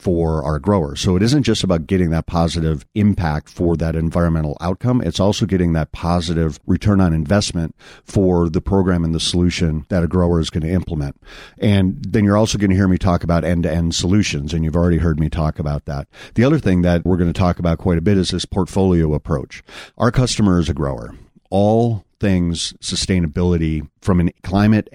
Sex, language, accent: male, English, American